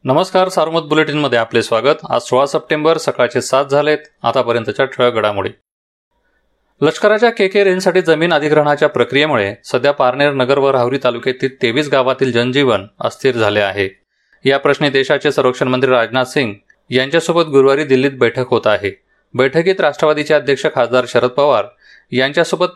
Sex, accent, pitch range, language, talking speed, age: male, native, 125-155 Hz, Marathi, 140 wpm, 30-49